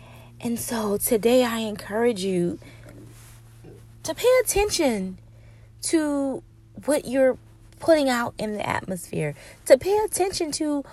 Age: 20-39